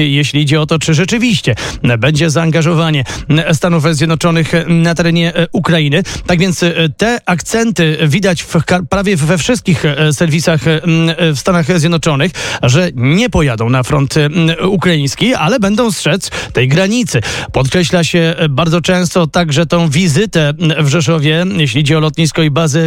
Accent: native